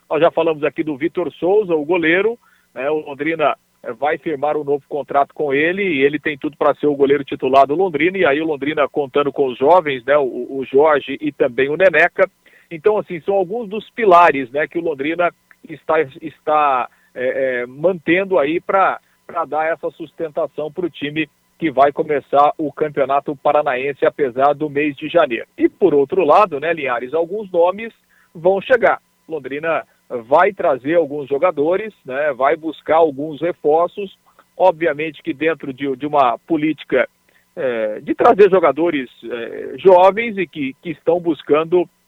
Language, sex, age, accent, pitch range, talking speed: Portuguese, male, 50-69, Brazilian, 150-185 Hz, 165 wpm